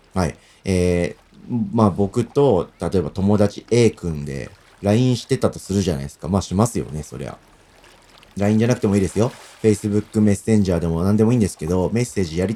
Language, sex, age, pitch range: Japanese, male, 40-59, 90-125 Hz